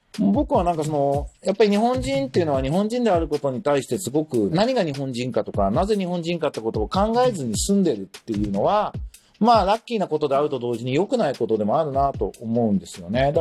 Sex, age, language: male, 40-59, Japanese